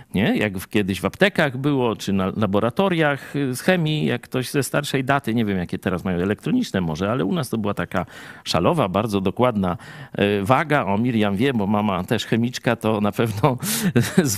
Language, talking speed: Polish, 180 wpm